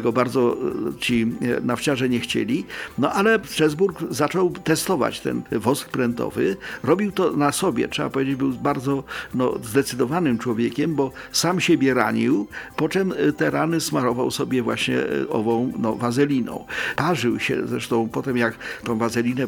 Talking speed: 130 wpm